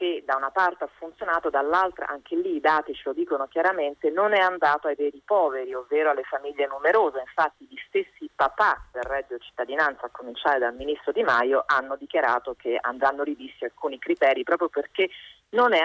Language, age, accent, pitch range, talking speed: Italian, 30-49, native, 135-190 Hz, 185 wpm